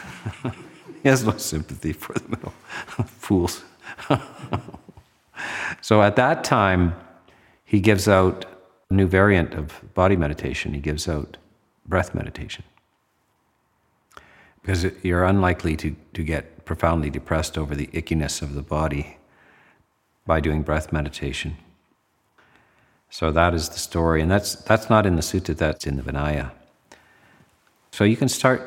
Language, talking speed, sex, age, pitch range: English, 135 wpm, male, 50-69, 80-100 Hz